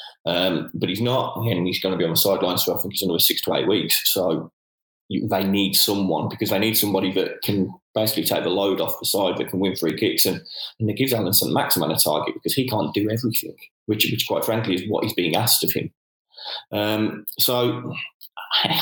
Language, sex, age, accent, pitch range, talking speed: English, male, 20-39, British, 100-115 Hz, 230 wpm